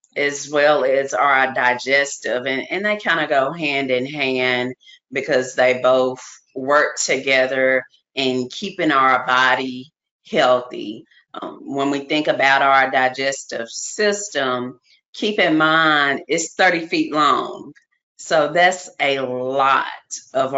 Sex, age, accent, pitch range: female, 30-49, American, 130-170 Hz